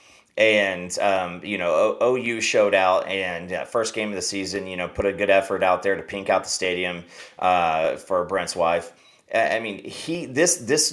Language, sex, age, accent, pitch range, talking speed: English, male, 30-49, American, 95-115 Hz, 200 wpm